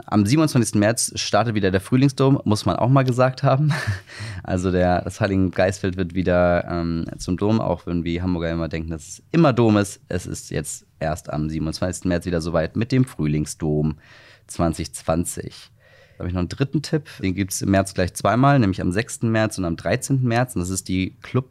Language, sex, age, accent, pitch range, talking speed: German, male, 30-49, German, 90-115 Hz, 205 wpm